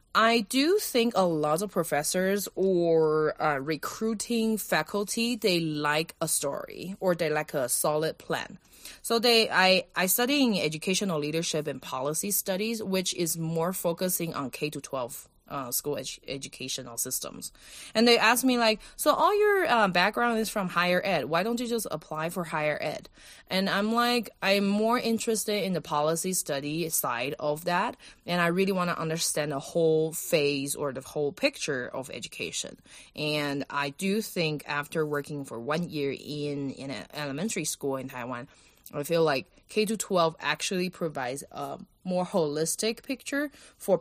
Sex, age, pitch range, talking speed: female, 20-39, 150-205 Hz, 165 wpm